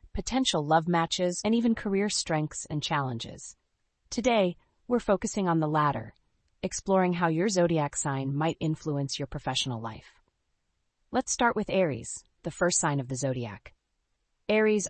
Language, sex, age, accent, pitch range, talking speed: English, female, 30-49, American, 140-185 Hz, 145 wpm